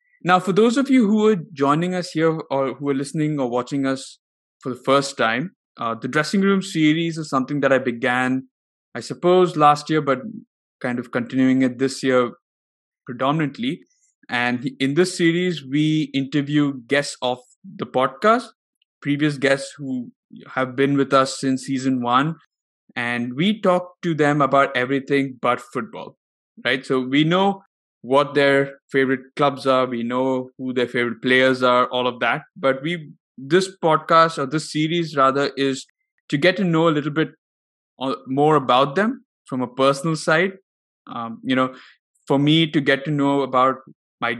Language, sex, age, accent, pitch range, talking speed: English, male, 20-39, Indian, 130-165 Hz, 170 wpm